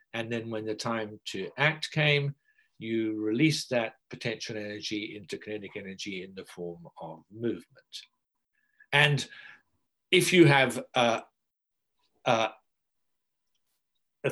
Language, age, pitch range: English, 60-79, 110-160 Hz